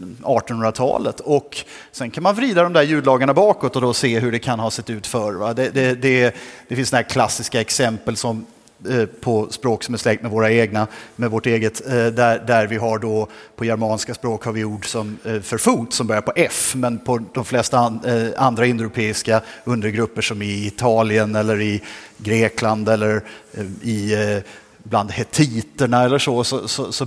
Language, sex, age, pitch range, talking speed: Swedish, male, 30-49, 115-135 Hz, 190 wpm